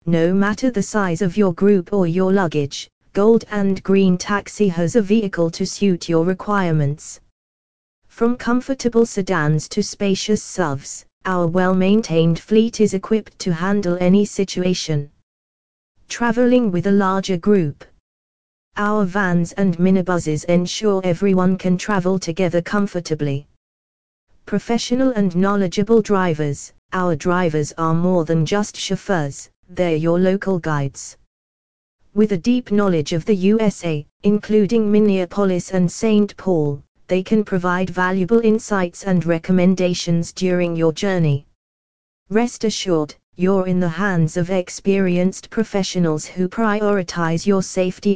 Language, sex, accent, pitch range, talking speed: English, female, British, 165-205 Hz, 125 wpm